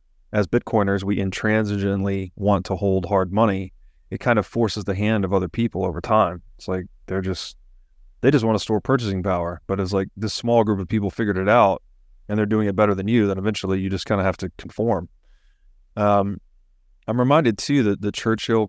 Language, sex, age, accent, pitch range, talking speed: English, male, 30-49, American, 95-115 Hz, 210 wpm